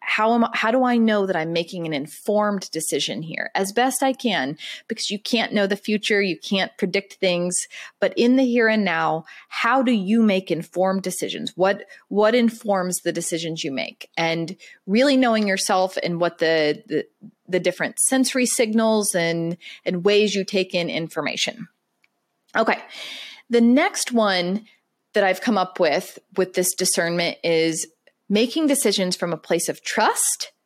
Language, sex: English, female